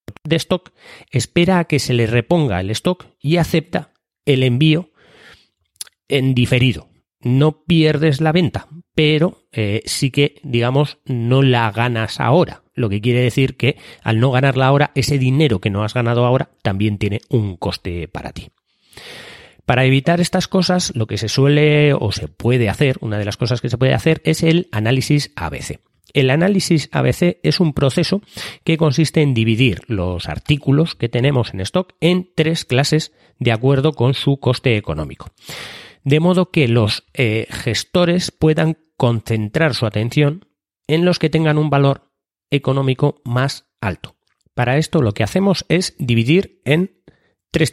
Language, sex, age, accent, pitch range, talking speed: Spanish, male, 30-49, Spanish, 115-160 Hz, 160 wpm